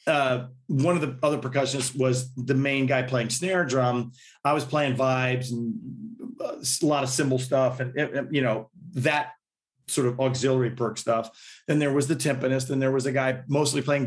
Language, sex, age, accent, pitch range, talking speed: English, male, 40-59, American, 125-145 Hz, 190 wpm